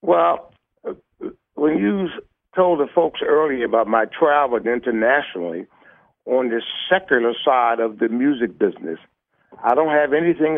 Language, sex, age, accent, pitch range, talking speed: English, male, 60-79, American, 115-150 Hz, 130 wpm